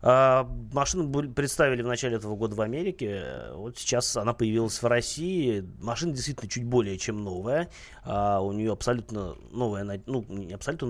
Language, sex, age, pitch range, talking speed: Russian, male, 30-49, 100-130 Hz, 165 wpm